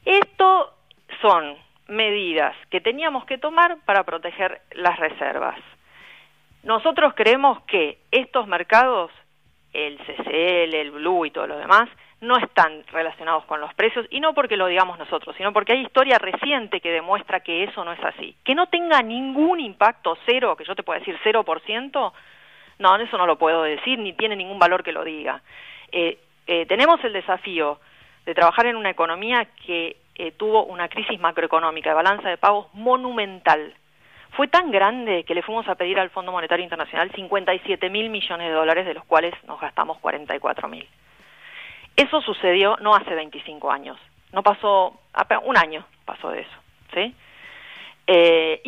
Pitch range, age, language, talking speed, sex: 165-235 Hz, 40-59, Spanish, 165 wpm, female